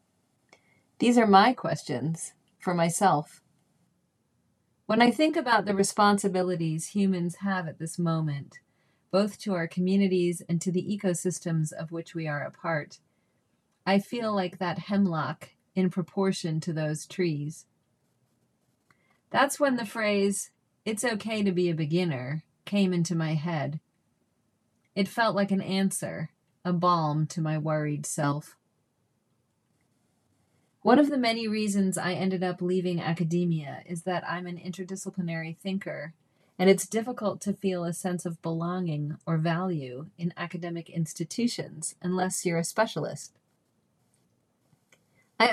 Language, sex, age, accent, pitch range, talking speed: English, female, 40-59, American, 165-195 Hz, 135 wpm